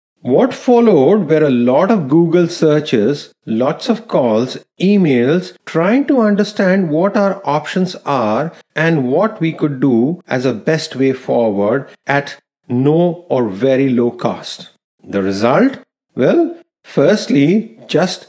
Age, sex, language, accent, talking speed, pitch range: 40-59, male, English, Indian, 130 wpm, 135-195 Hz